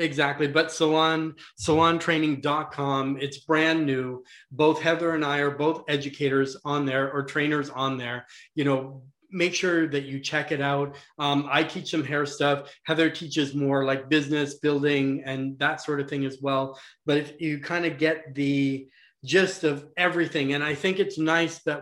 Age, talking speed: 30-49, 175 wpm